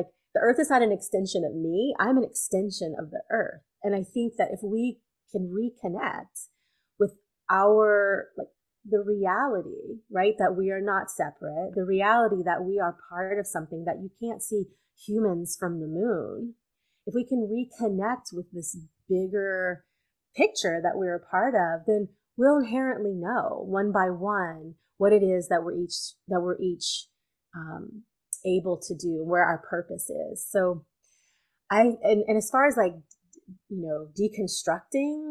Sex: female